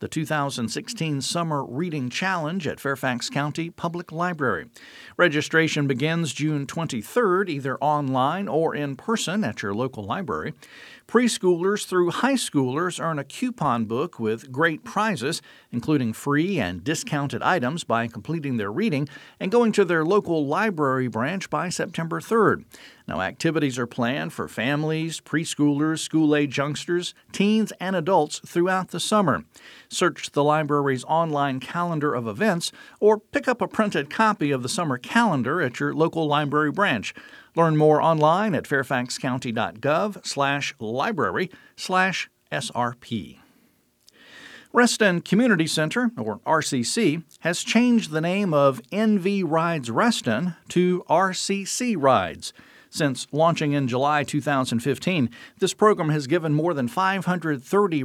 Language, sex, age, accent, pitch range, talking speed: English, male, 50-69, American, 140-185 Hz, 130 wpm